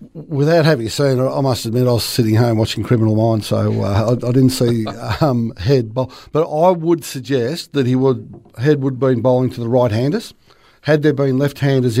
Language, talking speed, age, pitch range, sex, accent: English, 210 wpm, 60-79, 120-140 Hz, male, Australian